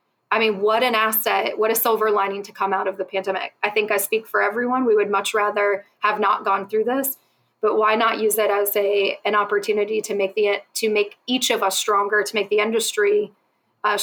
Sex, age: female, 20-39